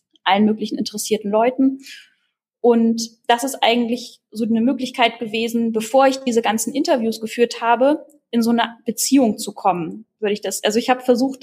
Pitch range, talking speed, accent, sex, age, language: 215-245 Hz, 170 wpm, German, female, 10-29, German